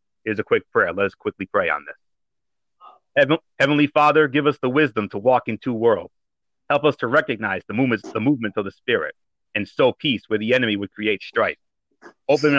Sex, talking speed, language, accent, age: male, 195 wpm, English, American, 30-49